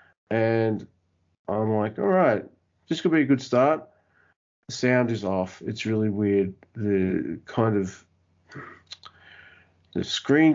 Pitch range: 110-135 Hz